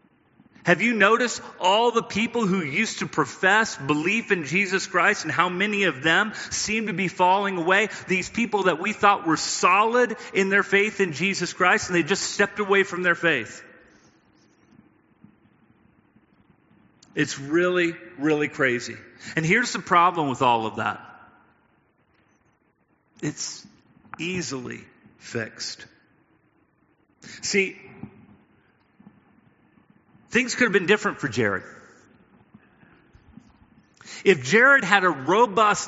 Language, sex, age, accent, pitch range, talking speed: English, male, 40-59, American, 165-205 Hz, 120 wpm